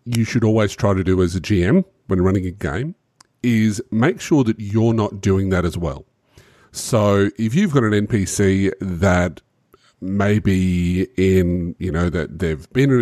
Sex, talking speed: male, 175 wpm